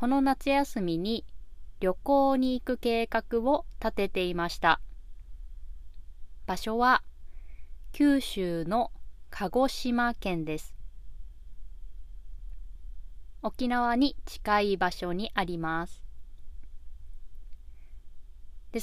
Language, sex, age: Japanese, female, 20-39